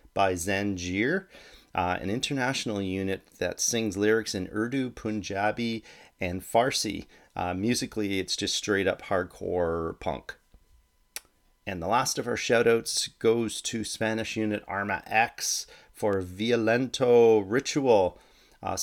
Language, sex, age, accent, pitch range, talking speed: English, male, 30-49, American, 95-110 Hz, 125 wpm